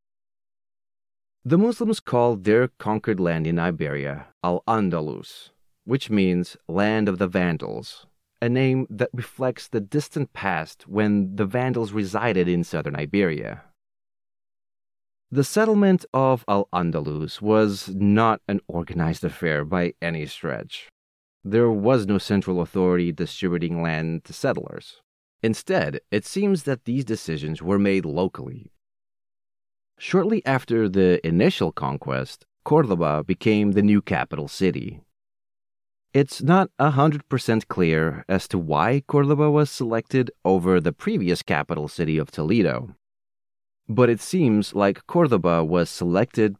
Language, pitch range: English, 85-125 Hz